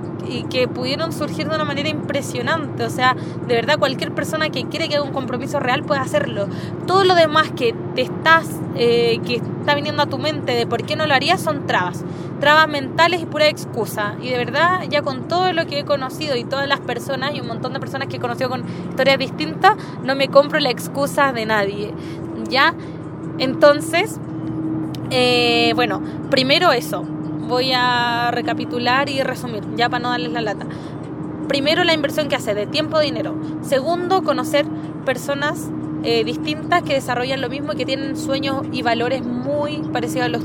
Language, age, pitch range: Spanish, 20-39, 200-305 Hz